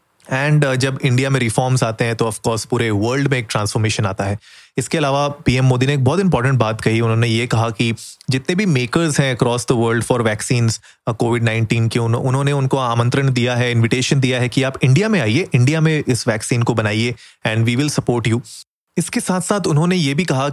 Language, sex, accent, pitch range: Hindi, male, native, 115-135 Hz